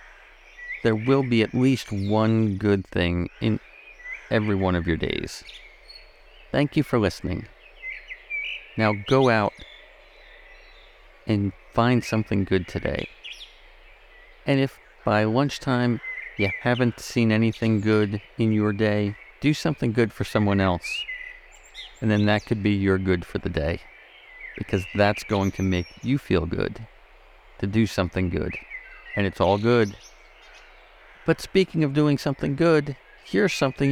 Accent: American